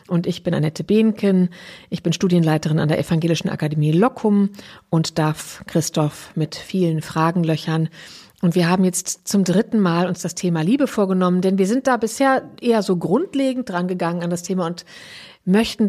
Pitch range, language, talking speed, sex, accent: 175-205 Hz, German, 180 wpm, female, German